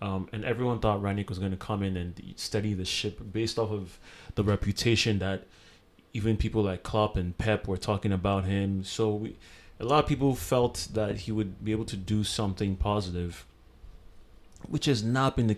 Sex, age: male, 30-49